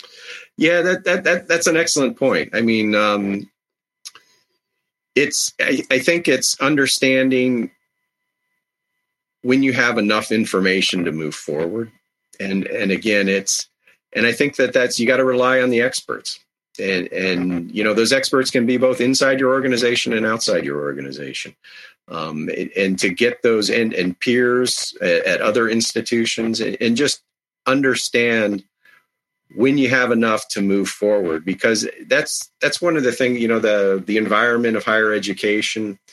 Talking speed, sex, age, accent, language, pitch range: 160 wpm, male, 40-59, American, English, 105-125 Hz